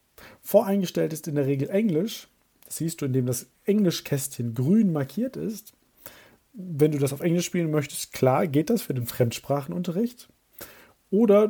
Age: 40-59